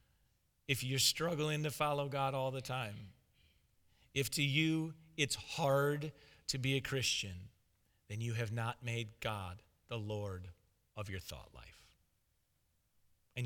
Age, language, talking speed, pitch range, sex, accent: 40-59, Russian, 140 wpm, 115-155 Hz, male, American